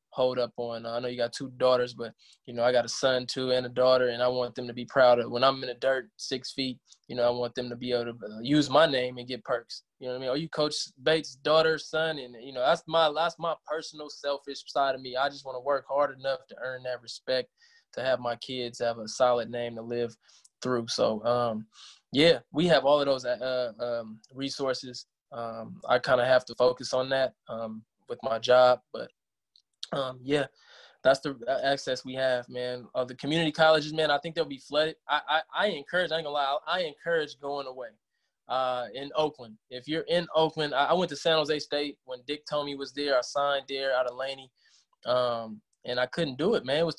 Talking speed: 235 wpm